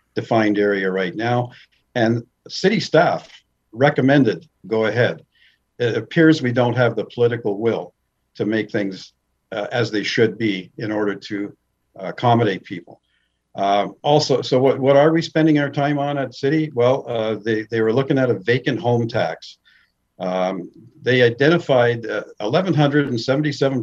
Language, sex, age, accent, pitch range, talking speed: English, male, 50-69, American, 105-135 Hz, 155 wpm